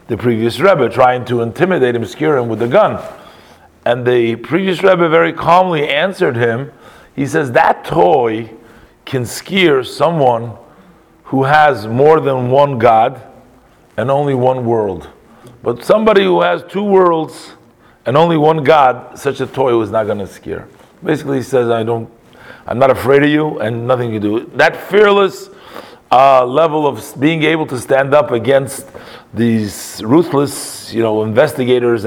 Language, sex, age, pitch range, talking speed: English, male, 40-59, 120-155 Hz, 160 wpm